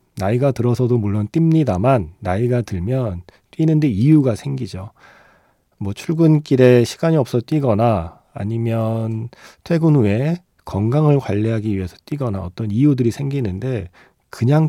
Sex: male